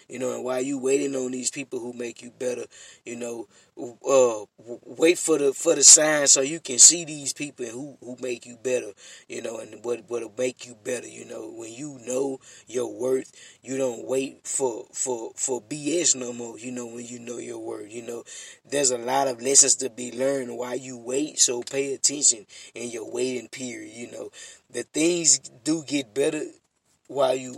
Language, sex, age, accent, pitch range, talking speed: English, male, 20-39, American, 125-140 Hz, 200 wpm